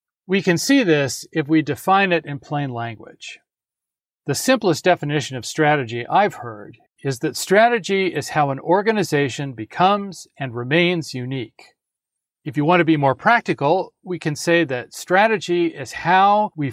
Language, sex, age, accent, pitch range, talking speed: English, male, 40-59, American, 140-190 Hz, 160 wpm